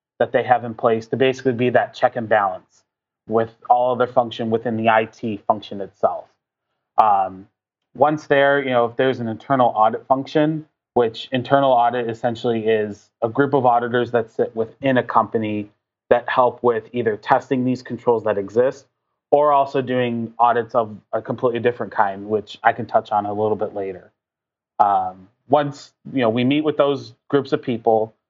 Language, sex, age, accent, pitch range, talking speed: English, male, 20-39, American, 110-130 Hz, 180 wpm